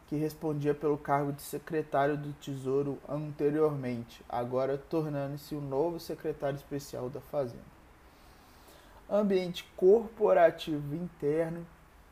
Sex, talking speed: male, 105 wpm